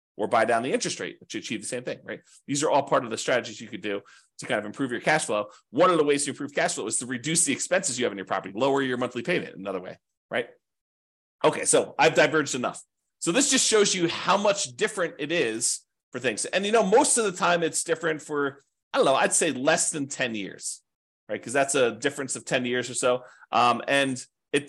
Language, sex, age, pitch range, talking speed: English, male, 30-49, 125-175 Hz, 250 wpm